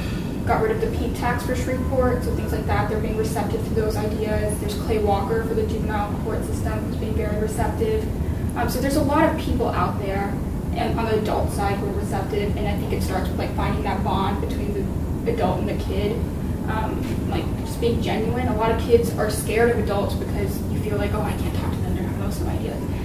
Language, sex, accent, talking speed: English, female, American, 240 wpm